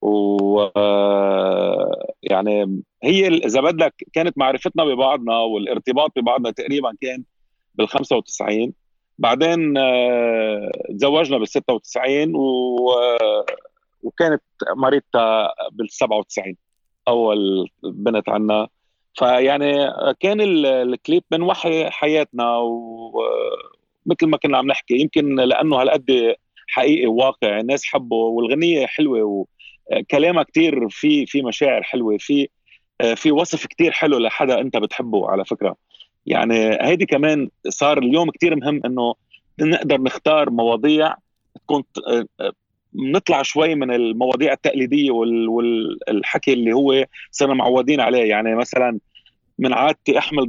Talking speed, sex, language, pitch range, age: 105 wpm, male, Arabic, 115-165 Hz, 40-59